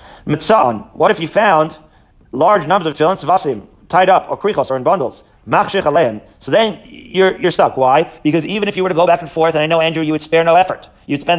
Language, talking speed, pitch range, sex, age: English, 220 wpm, 150-190 Hz, male, 40-59